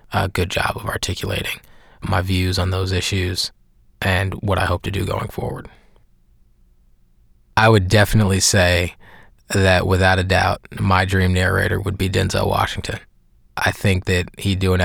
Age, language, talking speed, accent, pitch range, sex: 20-39, English, 160 wpm, American, 90-100 Hz, male